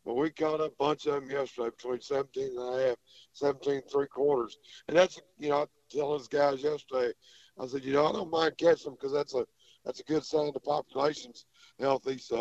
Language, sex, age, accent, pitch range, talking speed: English, male, 60-79, American, 130-155 Hz, 220 wpm